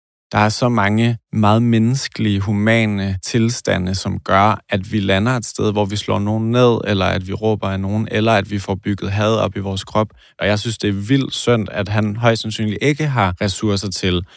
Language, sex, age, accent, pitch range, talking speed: Danish, male, 20-39, native, 95-110 Hz, 215 wpm